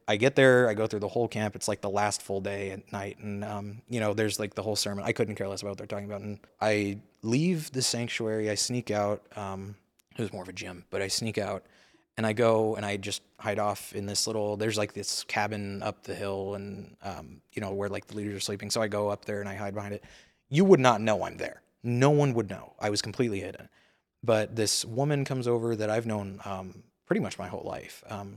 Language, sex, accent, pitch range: English, male, American, 100-110 Hz